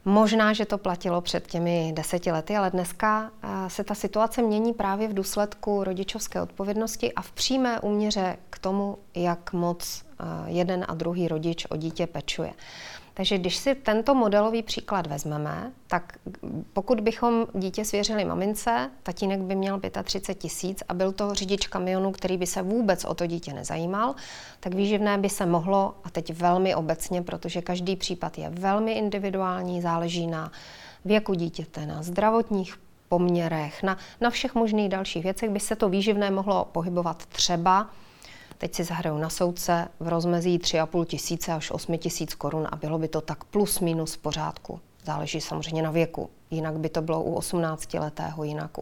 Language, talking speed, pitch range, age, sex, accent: Czech, 165 wpm, 170-205 Hz, 40-59, female, native